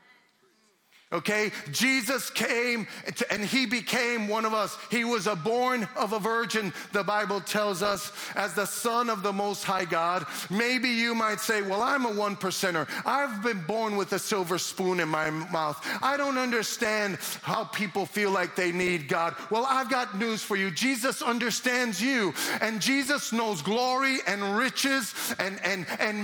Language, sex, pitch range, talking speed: English, male, 210-275 Hz, 170 wpm